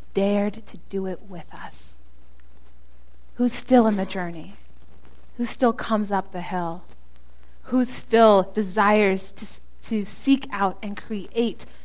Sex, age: female, 30-49